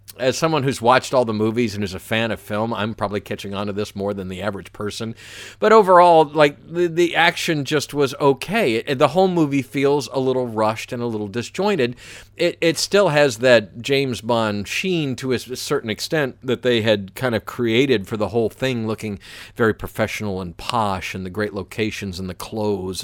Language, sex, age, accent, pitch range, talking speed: English, male, 50-69, American, 105-140 Hz, 205 wpm